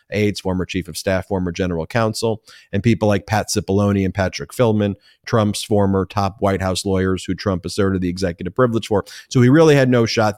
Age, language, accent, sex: 30-49, English, American, male